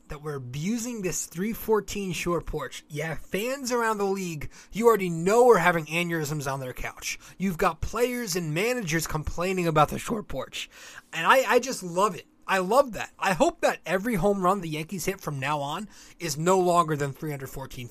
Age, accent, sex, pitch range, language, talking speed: 20-39, American, male, 155-200 Hz, English, 190 wpm